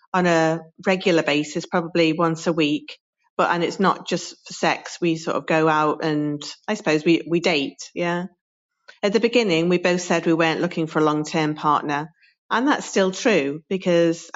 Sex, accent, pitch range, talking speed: female, British, 155-185 Hz, 190 wpm